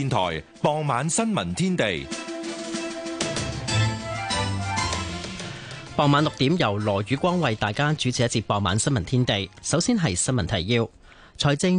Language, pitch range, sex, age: Chinese, 115-155 Hz, male, 30-49